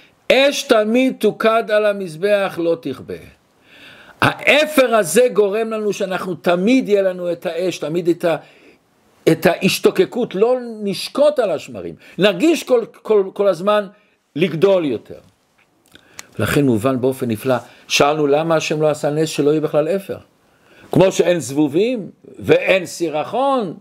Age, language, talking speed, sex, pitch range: 50-69, Hebrew, 130 wpm, male, 150-225 Hz